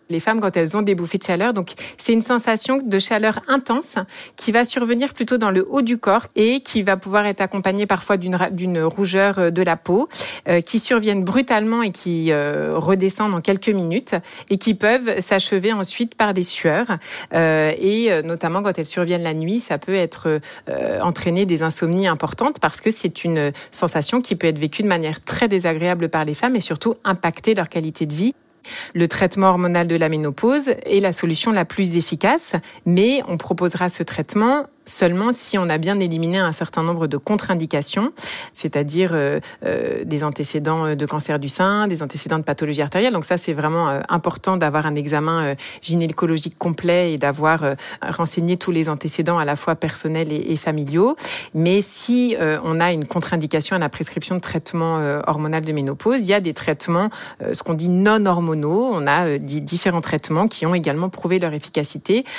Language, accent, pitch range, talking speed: French, French, 160-205 Hz, 195 wpm